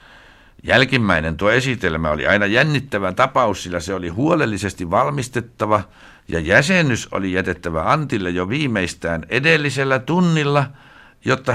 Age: 60-79